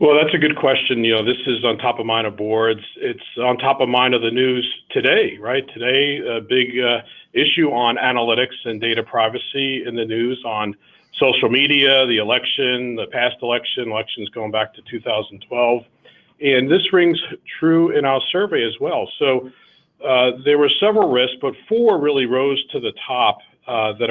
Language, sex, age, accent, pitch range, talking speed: English, male, 40-59, American, 115-140 Hz, 185 wpm